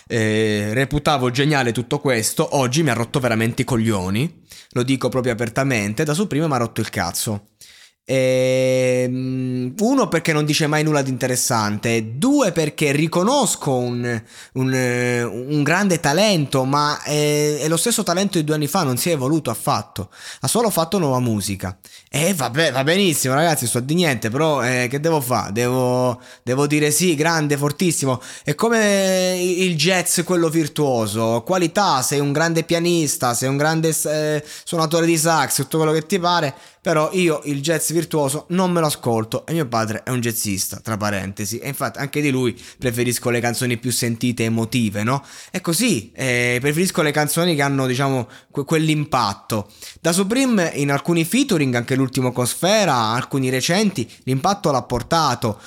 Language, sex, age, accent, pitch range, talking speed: Italian, male, 20-39, native, 125-165 Hz, 170 wpm